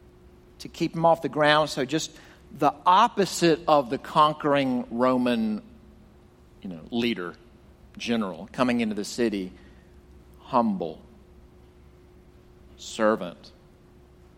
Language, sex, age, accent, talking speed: English, male, 50-69, American, 100 wpm